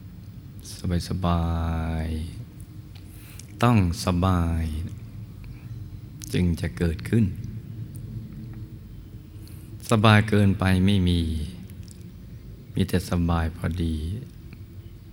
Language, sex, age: Thai, male, 20-39